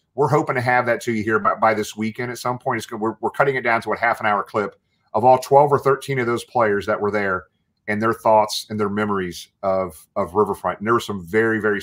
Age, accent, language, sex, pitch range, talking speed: 40-59, American, English, male, 100-125 Hz, 275 wpm